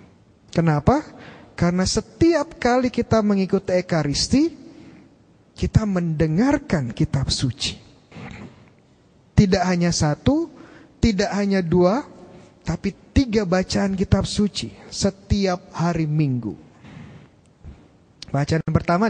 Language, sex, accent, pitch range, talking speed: Indonesian, male, native, 155-205 Hz, 85 wpm